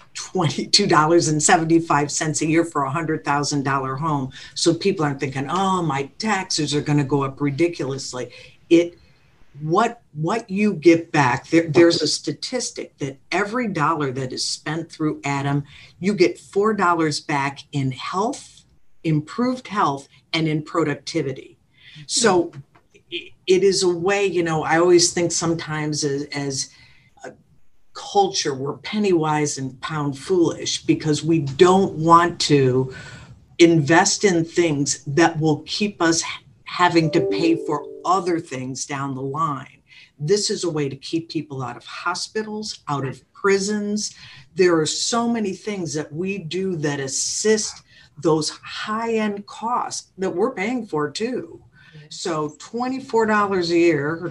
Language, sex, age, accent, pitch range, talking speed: English, female, 50-69, American, 145-190 Hz, 140 wpm